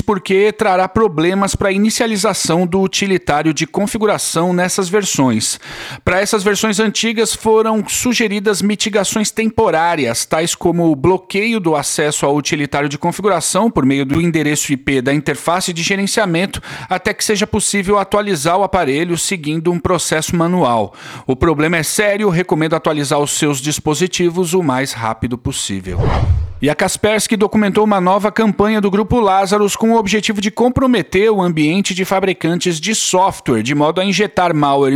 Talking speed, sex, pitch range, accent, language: 155 wpm, male, 150-205 Hz, Brazilian, Portuguese